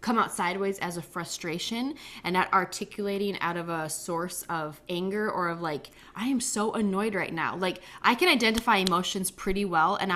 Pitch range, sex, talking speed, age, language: 180-230 Hz, female, 190 wpm, 20-39, English